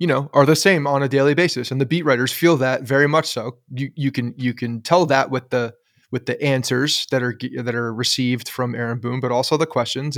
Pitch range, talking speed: 130-160 Hz, 250 wpm